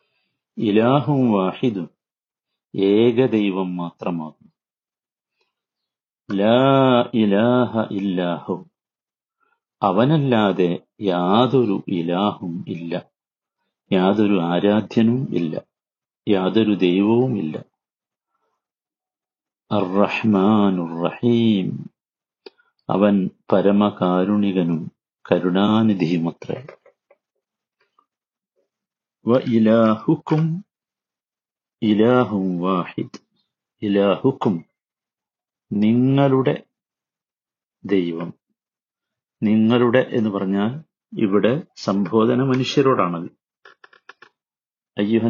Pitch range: 95-120 Hz